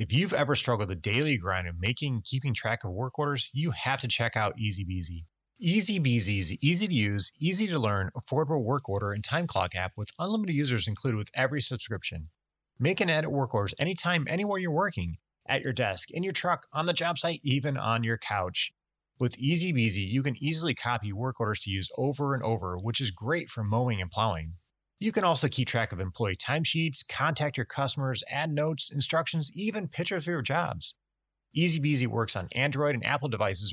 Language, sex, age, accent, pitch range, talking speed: English, male, 30-49, American, 105-150 Hz, 200 wpm